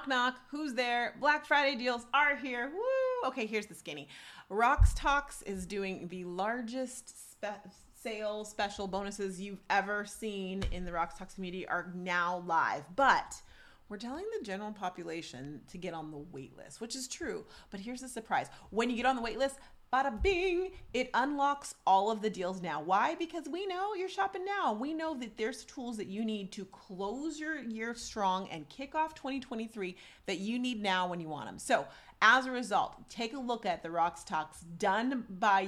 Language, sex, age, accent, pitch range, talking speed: English, female, 30-49, American, 185-255 Hz, 195 wpm